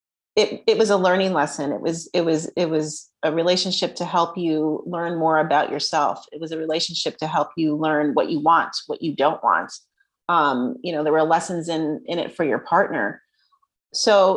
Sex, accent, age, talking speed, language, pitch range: female, American, 30-49, 205 wpm, English, 165-210 Hz